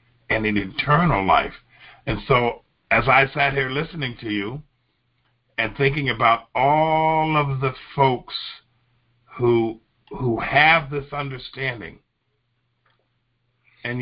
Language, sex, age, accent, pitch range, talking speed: English, male, 50-69, American, 110-140 Hz, 110 wpm